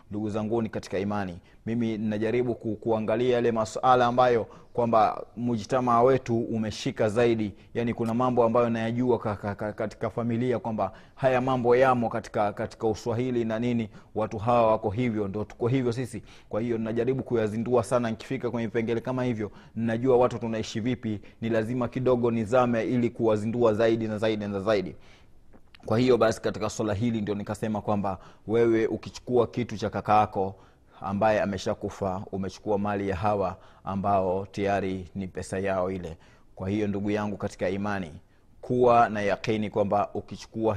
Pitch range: 100-115 Hz